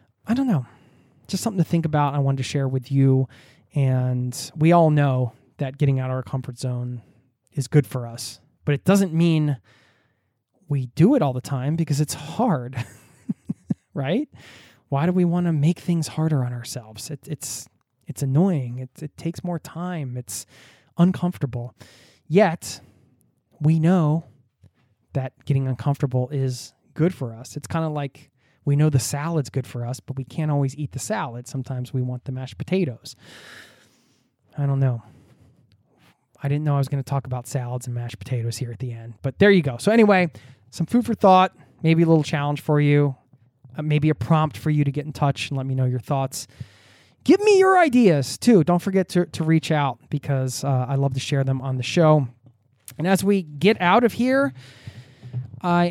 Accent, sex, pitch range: American, male, 125-160 Hz